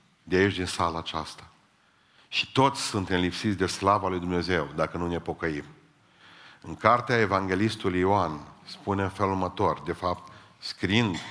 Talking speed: 150 wpm